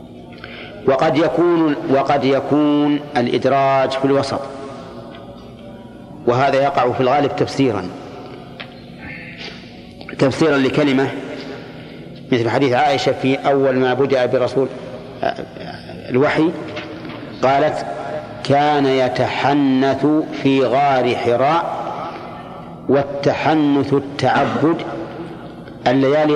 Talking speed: 75 wpm